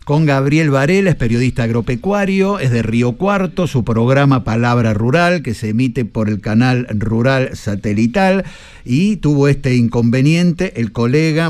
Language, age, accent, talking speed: Spanish, 50-69, Argentinian, 145 wpm